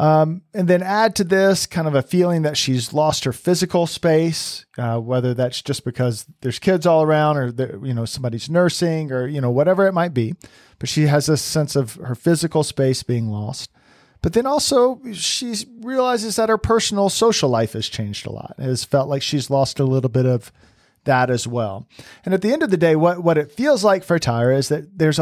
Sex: male